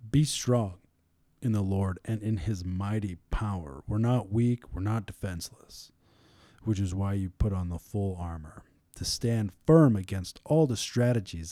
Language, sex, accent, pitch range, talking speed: English, male, American, 85-110 Hz, 165 wpm